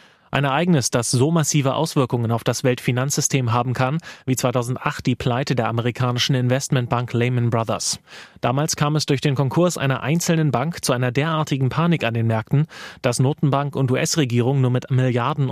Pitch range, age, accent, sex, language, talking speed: 120-145 Hz, 30-49, German, male, German, 165 wpm